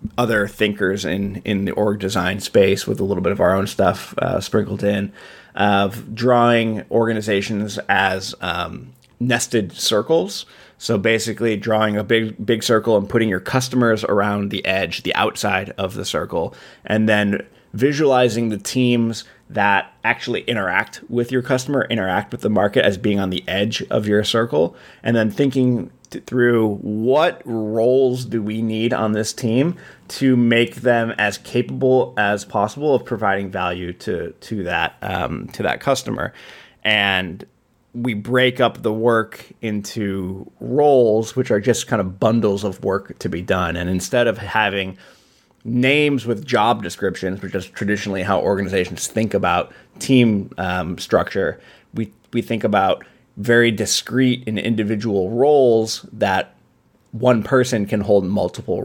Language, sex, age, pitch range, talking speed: English, male, 20-39, 100-120 Hz, 150 wpm